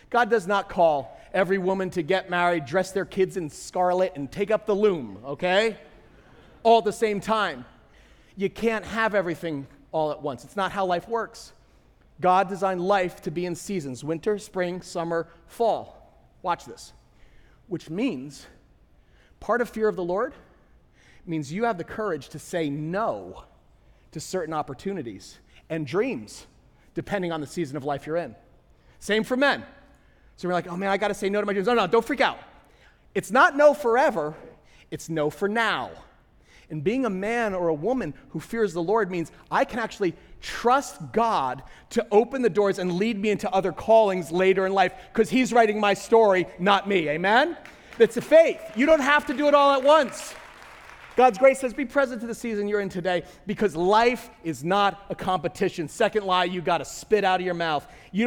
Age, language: 40-59, English